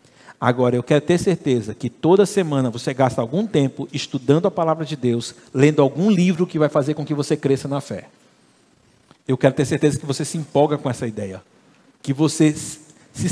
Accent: Brazilian